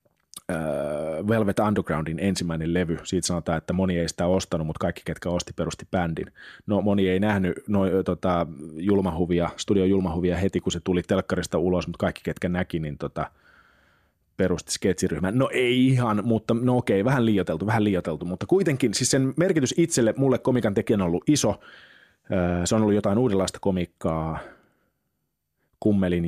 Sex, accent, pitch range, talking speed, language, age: male, native, 90-110 Hz, 155 wpm, Finnish, 30-49